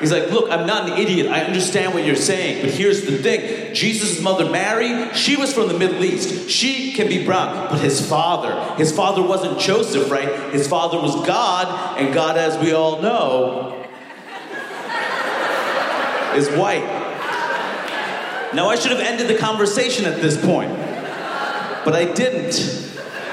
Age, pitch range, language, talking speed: 40-59, 170-220 Hz, English, 160 wpm